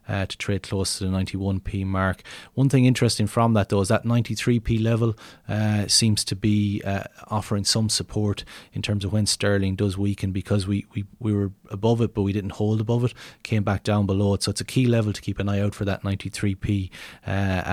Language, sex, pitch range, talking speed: English, male, 95-110 Hz, 220 wpm